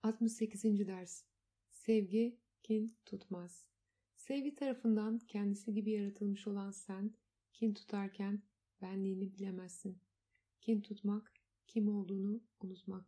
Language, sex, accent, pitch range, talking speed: Turkish, female, native, 185-210 Hz, 95 wpm